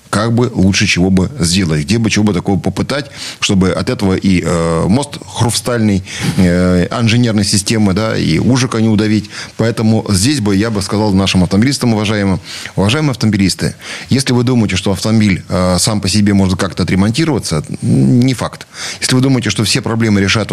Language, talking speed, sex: Russian, 170 wpm, male